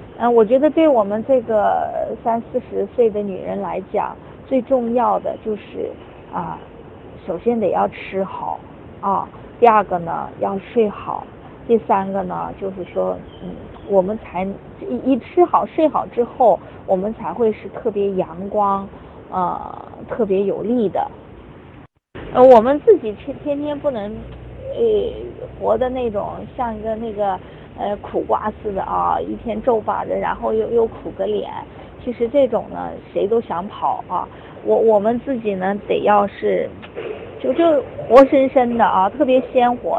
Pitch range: 205-270 Hz